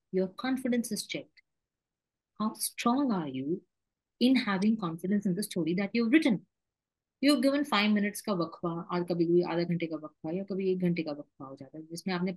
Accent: native